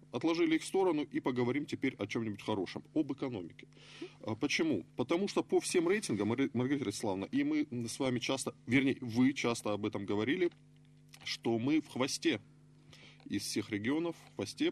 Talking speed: 160 wpm